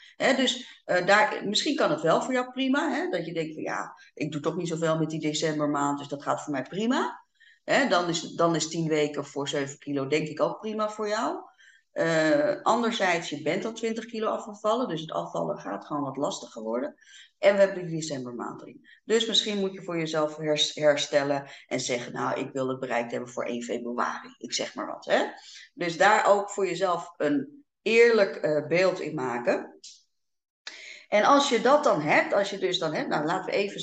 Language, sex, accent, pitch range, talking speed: Dutch, female, Dutch, 145-210 Hz, 210 wpm